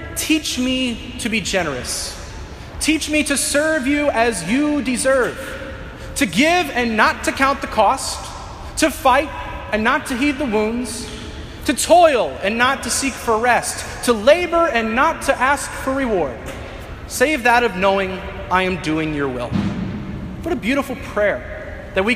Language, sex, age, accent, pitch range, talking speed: English, male, 30-49, American, 195-265 Hz, 160 wpm